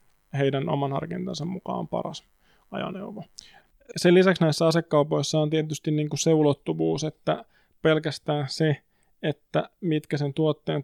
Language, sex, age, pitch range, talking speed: Finnish, male, 20-39, 145-160 Hz, 120 wpm